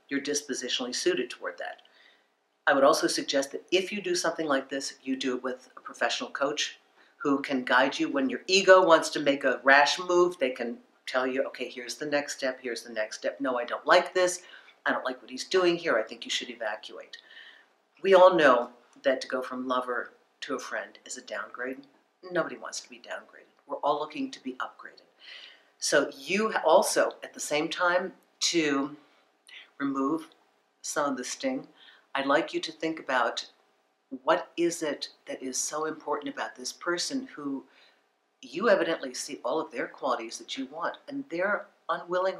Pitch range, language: 140-185 Hz, English